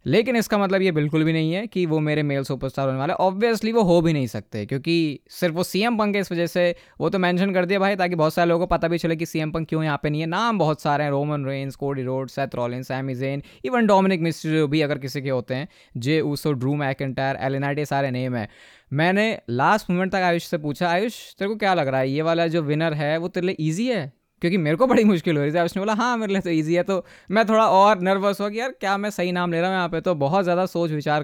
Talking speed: 265 wpm